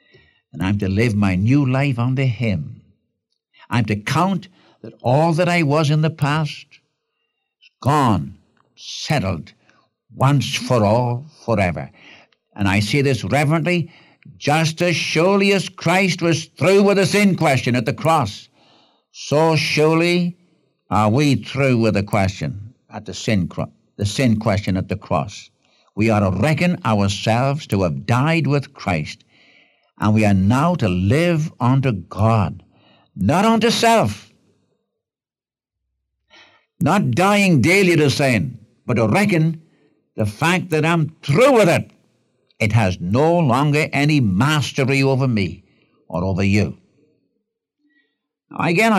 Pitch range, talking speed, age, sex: 105-160 Hz, 135 wpm, 60-79, male